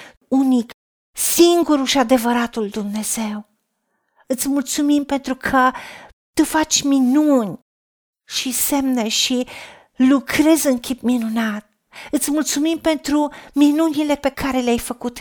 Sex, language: female, Romanian